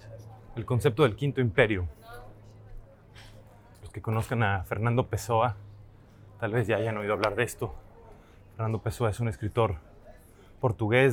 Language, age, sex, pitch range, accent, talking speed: English, 20-39, male, 100-125 Hz, Mexican, 135 wpm